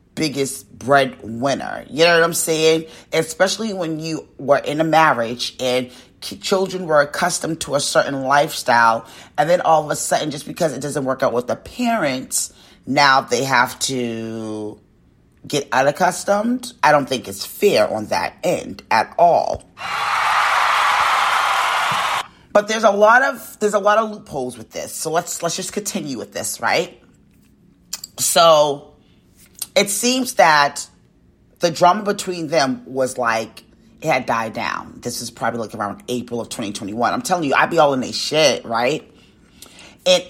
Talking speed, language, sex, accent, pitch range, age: 160 wpm, English, female, American, 125-180 Hz, 30-49